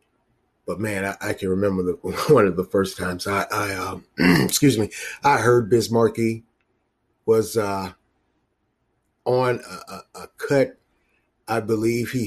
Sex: male